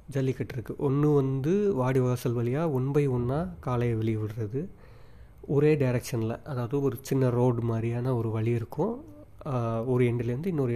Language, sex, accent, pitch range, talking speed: Tamil, male, native, 115-140 Hz, 145 wpm